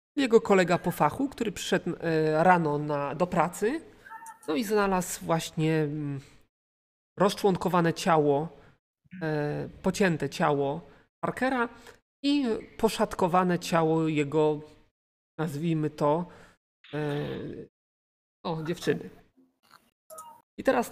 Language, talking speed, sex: Polish, 80 wpm, male